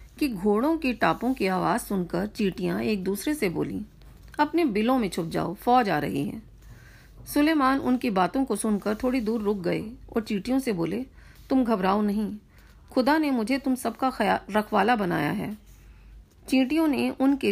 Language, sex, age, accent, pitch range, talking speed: Hindi, female, 40-59, native, 195-260 Hz, 80 wpm